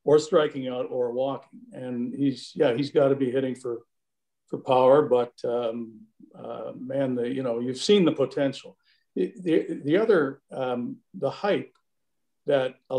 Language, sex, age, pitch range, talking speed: English, male, 50-69, 120-160 Hz, 165 wpm